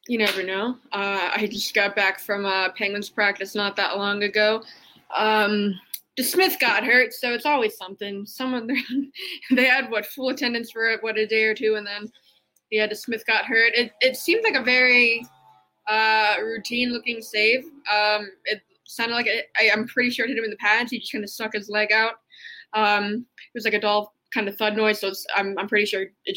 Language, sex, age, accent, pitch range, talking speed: English, female, 20-39, American, 200-235 Hz, 215 wpm